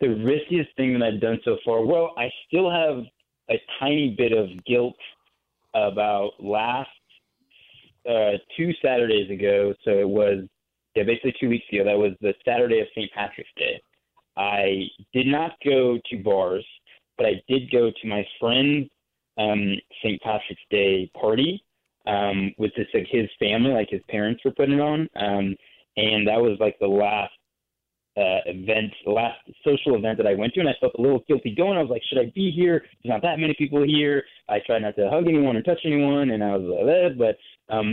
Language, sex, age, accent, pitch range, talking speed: English, male, 30-49, American, 105-135 Hz, 195 wpm